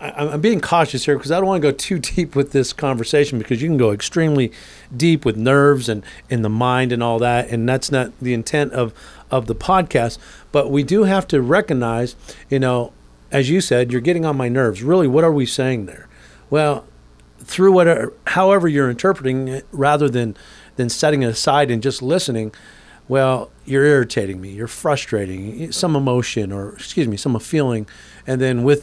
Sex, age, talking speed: male, 40-59, 195 wpm